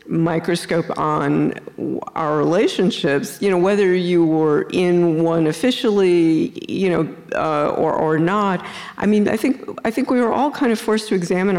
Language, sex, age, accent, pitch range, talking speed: English, female, 50-69, American, 160-195 Hz, 165 wpm